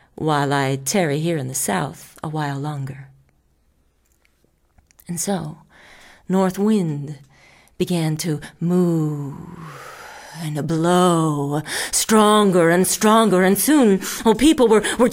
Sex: female